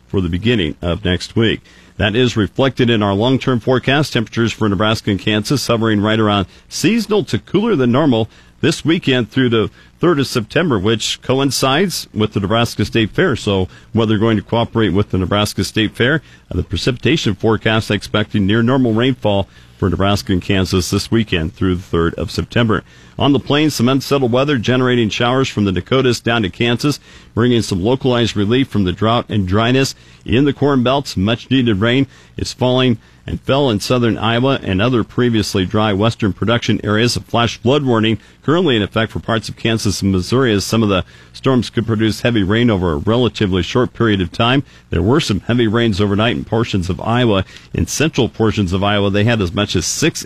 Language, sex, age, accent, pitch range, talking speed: English, male, 50-69, American, 100-125 Hz, 195 wpm